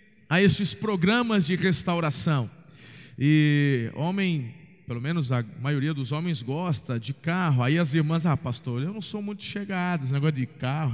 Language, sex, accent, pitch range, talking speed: Portuguese, male, Brazilian, 160-195 Hz, 165 wpm